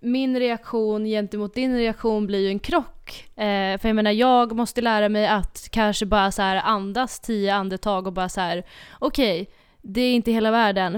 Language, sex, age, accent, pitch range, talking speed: Swedish, female, 20-39, native, 195-225 Hz, 195 wpm